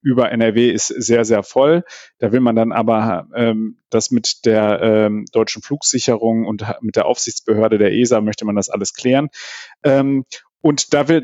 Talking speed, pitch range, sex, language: 170 wpm, 110-135 Hz, male, German